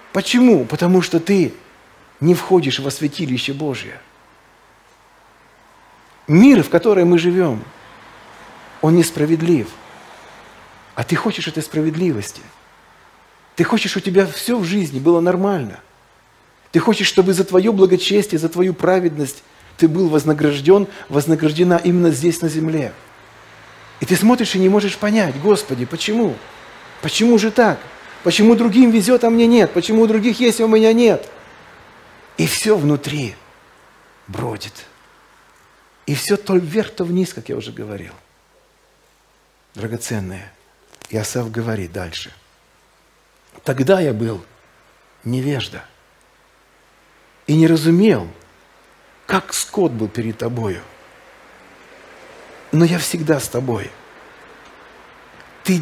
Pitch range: 130-195 Hz